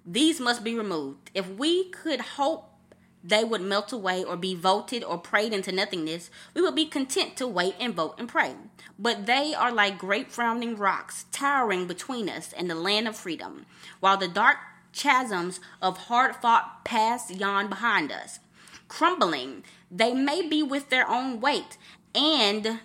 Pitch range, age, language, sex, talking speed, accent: 195-270 Hz, 20-39, English, female, 165 wpm, American